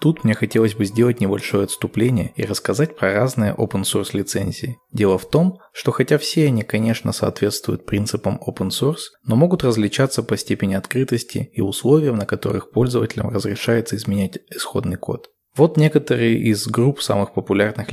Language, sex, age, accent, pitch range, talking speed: Russian, male, 20-39, native, 105-130 Hz, 150 wpm